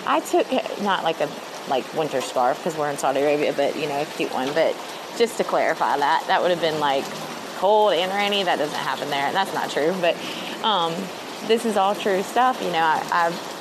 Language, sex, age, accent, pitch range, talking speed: English, female, 20-39, American, 160-195 Hz, 220 wpm